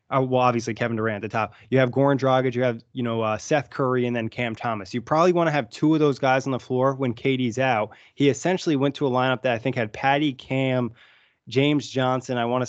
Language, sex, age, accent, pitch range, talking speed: English, male, 20-39, American, 120-135 Hz, 255 wpm